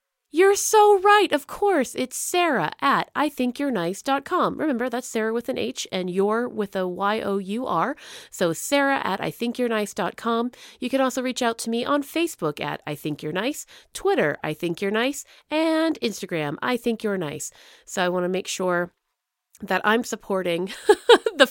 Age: 30-49